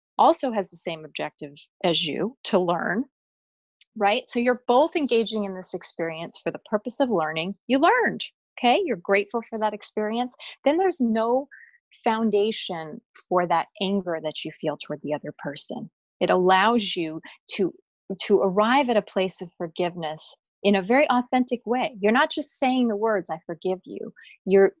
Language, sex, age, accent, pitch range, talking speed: English, female, 30-49, American, 180-240 Hz, 170 wpm